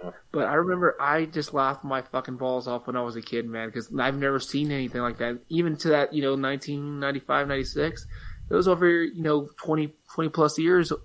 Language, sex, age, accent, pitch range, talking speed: English, male, 20-39, American, 130-155 Hz, 210 wpm